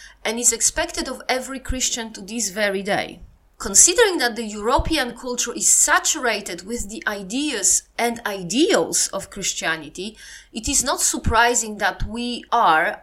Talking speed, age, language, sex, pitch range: 145 wpm, 30-49, English, female, 215-310 Hz